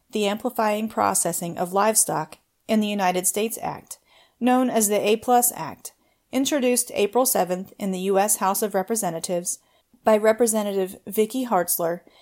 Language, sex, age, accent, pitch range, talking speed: English, female, 30-49, American, 185-235 Hz, 135 wpm